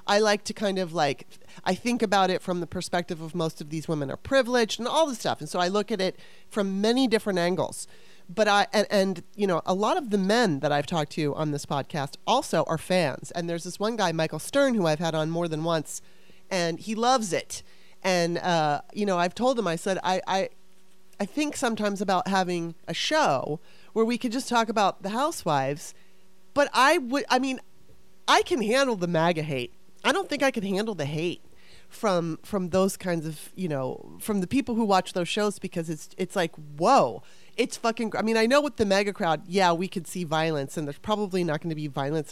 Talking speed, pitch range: 225 wpm, 170-215 Hz